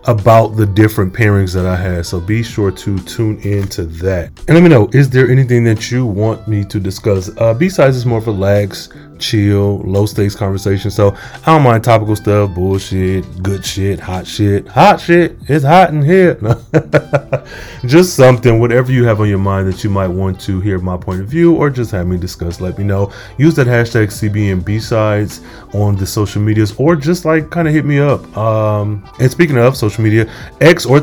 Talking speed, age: 205 wpm, 20-39